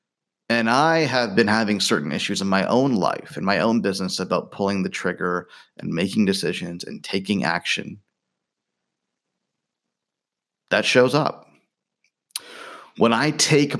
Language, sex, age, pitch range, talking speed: English, male, 30-49, 100-155 Hz, 135 wpm